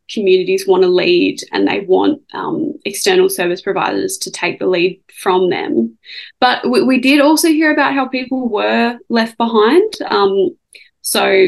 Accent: Australian